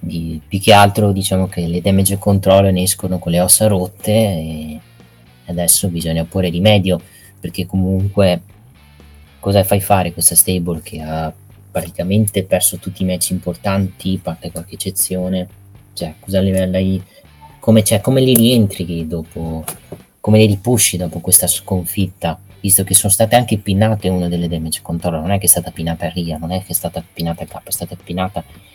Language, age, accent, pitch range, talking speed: Italian, 20-39, native, 90-100 Hz, 175 wpm